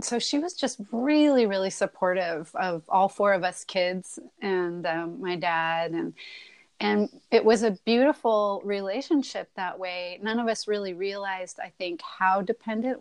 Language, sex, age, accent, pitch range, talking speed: English, female, 30-49, American, 185-240 Hz, 160 wpm